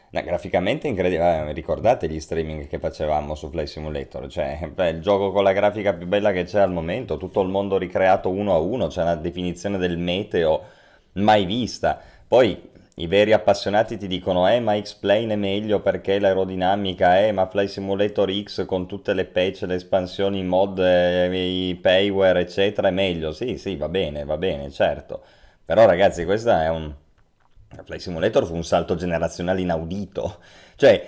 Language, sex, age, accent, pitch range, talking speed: Italian, male, 30-49, native, 85-105 Hz, 170 wpm